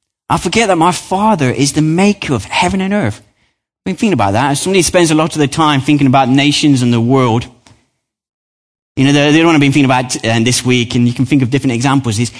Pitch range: 115-170 Hz